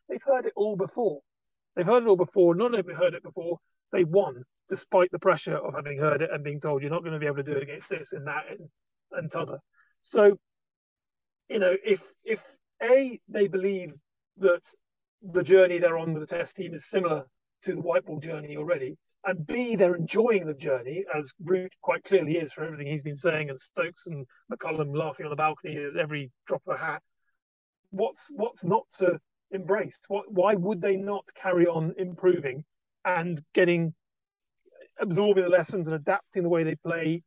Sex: male